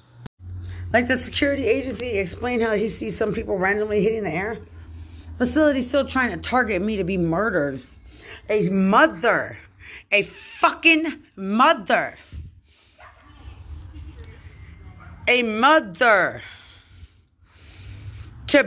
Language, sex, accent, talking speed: English, female, American, 100 wpm